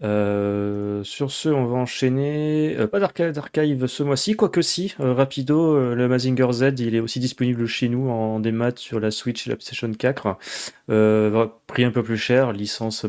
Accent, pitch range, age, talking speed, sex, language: French, 105-130 Hz, 30-49, 200 wpm, male, French